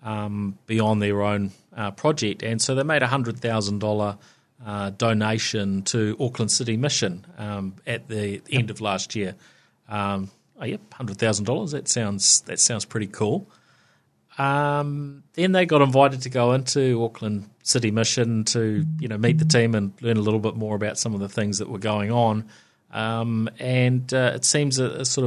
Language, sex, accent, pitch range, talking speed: English, male, Australian, 110-125 Hz, 190 wpm